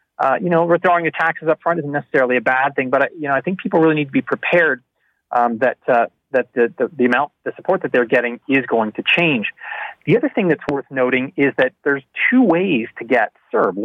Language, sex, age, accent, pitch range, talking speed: English, male, 30-49, American, 120-155 Hz, 245 wpm